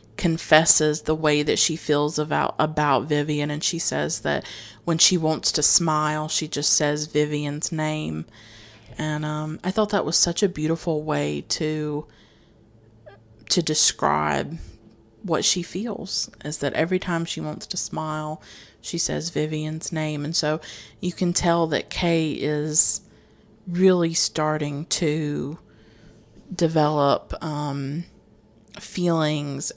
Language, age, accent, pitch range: English, 30-49, American, 145-175 Hz